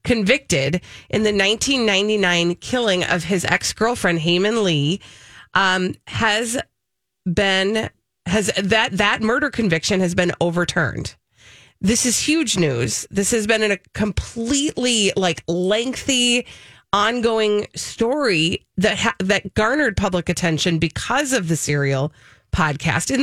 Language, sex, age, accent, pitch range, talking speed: English, female, 30-49, American, 165-215 Hz, 120 wpm